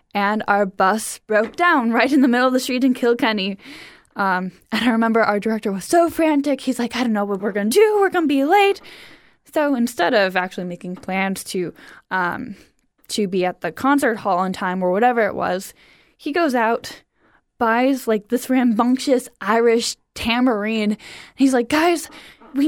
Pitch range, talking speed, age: 215-280 Hz, 190 wpm, 10-29